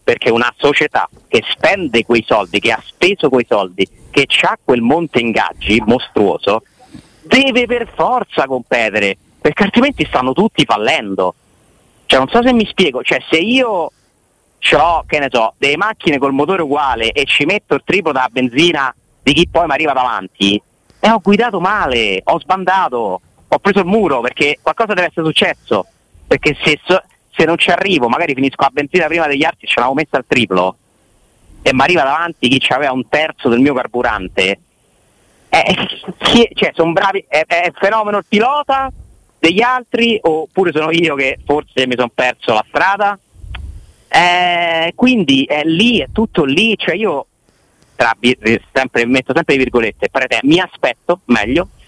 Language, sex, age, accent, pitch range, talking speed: Italian, male, 40-59, native, 130-205 Hz, 165 wpm